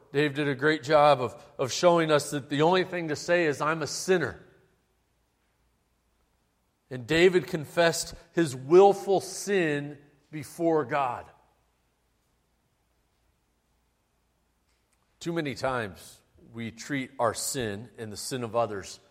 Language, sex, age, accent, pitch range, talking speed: English, male, 40-59, American, 130-170 Hz, 120 wpm